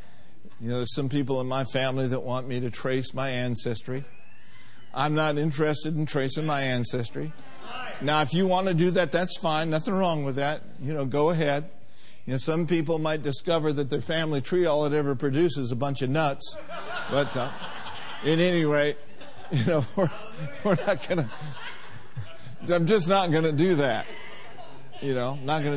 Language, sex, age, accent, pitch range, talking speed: English, male, 50-69, American, 135-180 Hz, 190 wpm